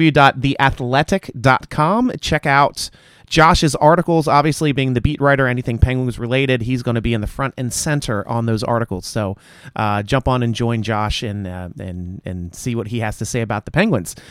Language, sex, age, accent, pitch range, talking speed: English, male, 30-49, American, 110-140 Hz, 185 wpm